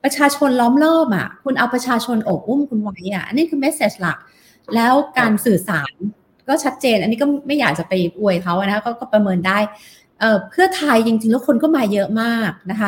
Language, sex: Thai, female